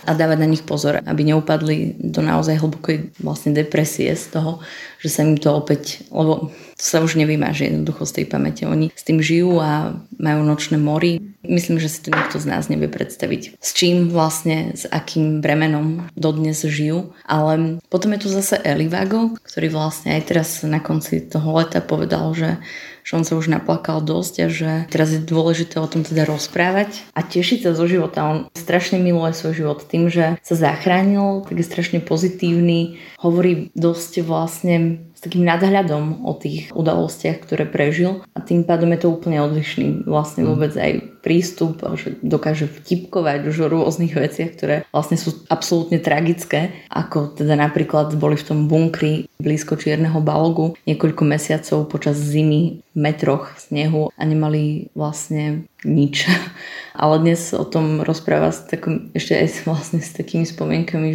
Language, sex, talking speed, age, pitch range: Slovak, female, 165 wpm, 20-39, 150-170 Hz